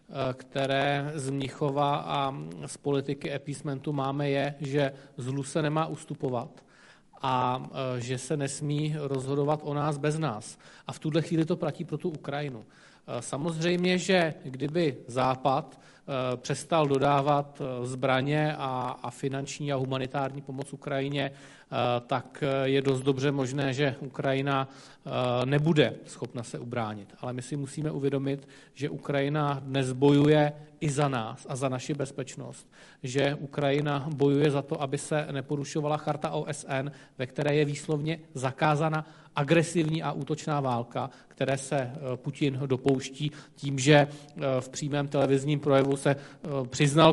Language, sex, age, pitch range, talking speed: Slovak, male, 40-59, 135-150 Hz, 130 wpm